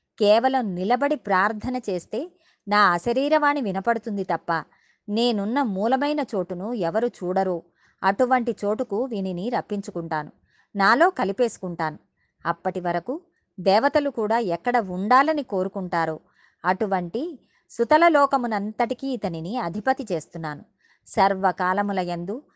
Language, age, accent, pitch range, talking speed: Telugu, 20-39, native, 185-255 Hz, 85 wpm